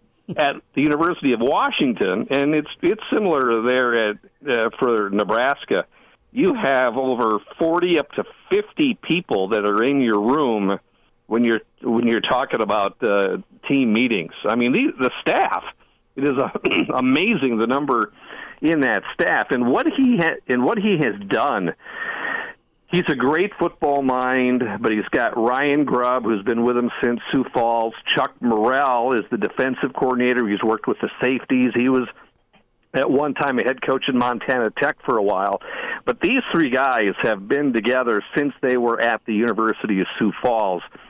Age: 50-69